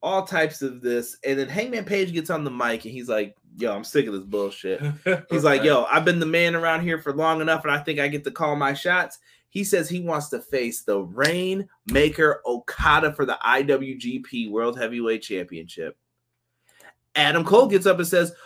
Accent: American